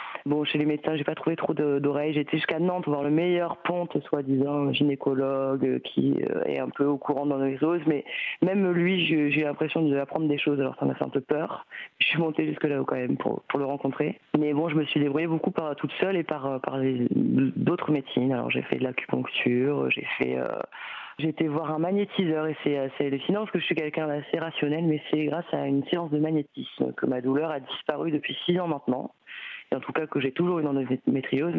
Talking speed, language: 230 wpm, French